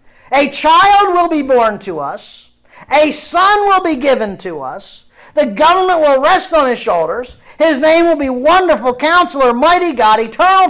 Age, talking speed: 50-69, 170 wpm